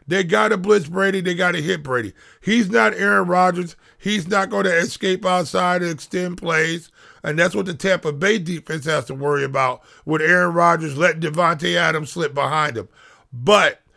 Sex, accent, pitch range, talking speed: male, American, 160-200 Hz, 190 wpm